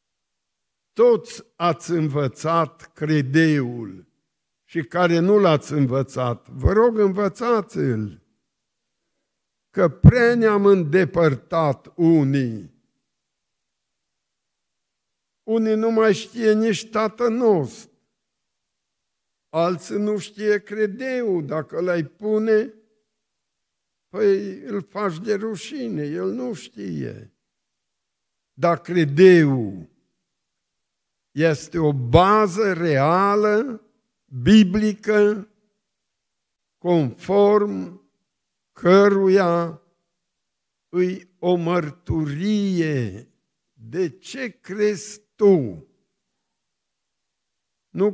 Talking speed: 70 wpm